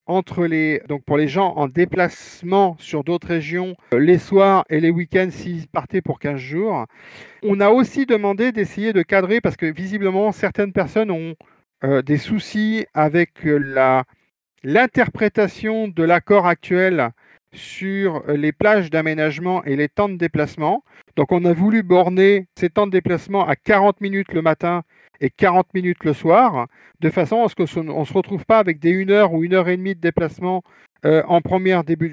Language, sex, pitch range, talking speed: French, male, 155-190 Hz, 175 wpm